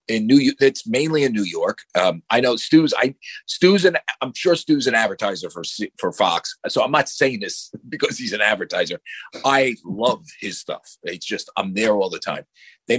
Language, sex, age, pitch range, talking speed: English, male, 40-59, 105-175 Hz, 200 wpm